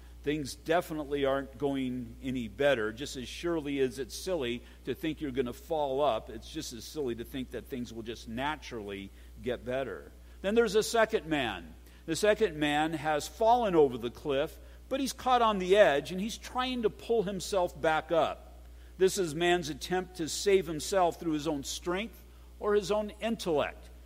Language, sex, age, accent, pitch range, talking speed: English, male, 50-69, American, 130-175 Hz, 185 wpm